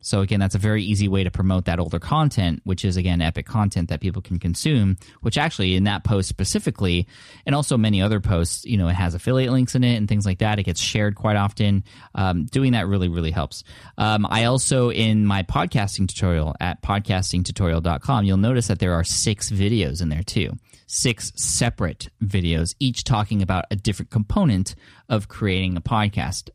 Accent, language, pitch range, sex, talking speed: American, English, 95-115 Hz, male, 195 wpm